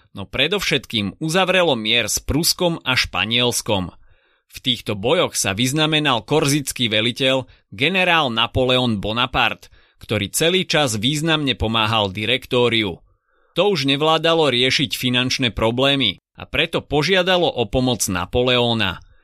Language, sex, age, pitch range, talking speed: Slovak, male, 30-49, 110-145 Hz, 110 wpm